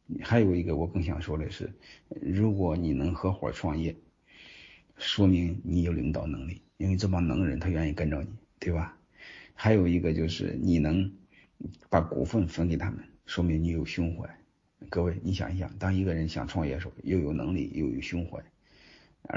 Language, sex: Chinese, male